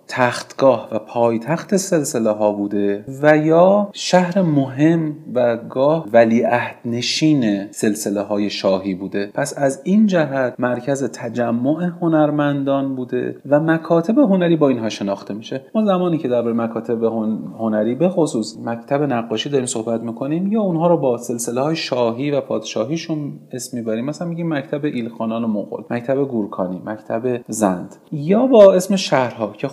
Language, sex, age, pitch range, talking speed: Persian, male, 30-49, 110-160 Hz, 145 wpm